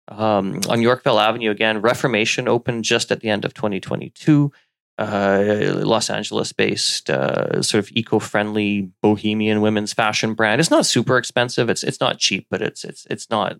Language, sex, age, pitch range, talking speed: English, male, 30-49, 105-125 Hz, 165 wpm